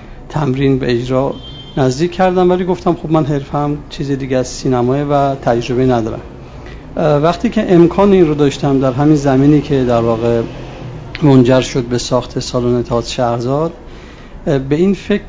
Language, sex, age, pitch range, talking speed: Persian, male, 50-69, 125-160 Hz, 155 wpm